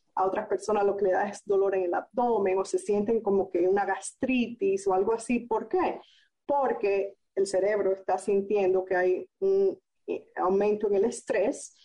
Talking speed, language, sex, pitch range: 185 wpm, Spanish, female, 200-255 Hz